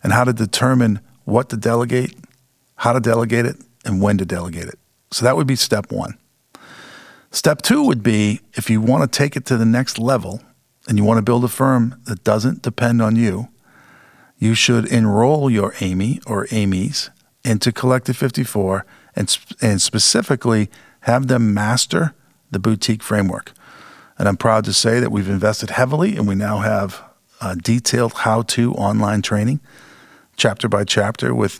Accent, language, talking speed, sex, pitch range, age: American, English, 165 wpm, male, 100-125 Hz, 50-69